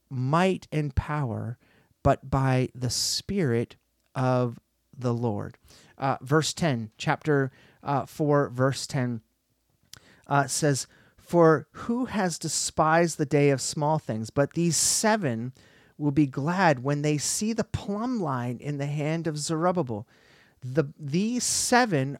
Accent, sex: American, male